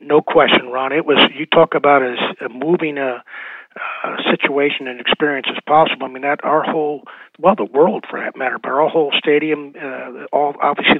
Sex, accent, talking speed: male, American, 195 wpm